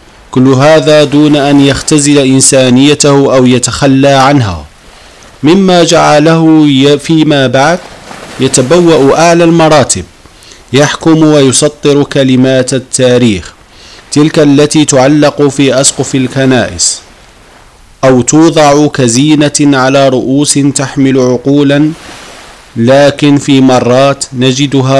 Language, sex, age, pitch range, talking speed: Arabic, male, 40-59, 130-150 Hz, 90 wpm